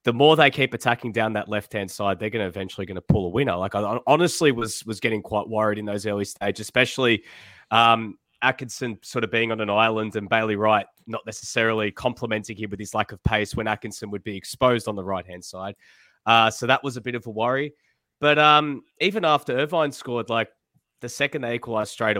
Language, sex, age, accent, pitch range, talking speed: English, male, 20-39, Australian, 110-140 Hz, 220 wpm